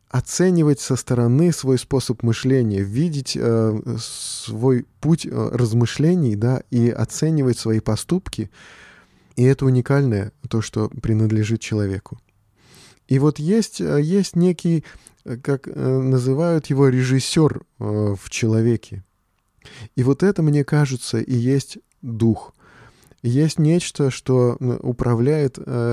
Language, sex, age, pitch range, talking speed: Russian, male, 20-39, 120-150 Hz, 110 wpm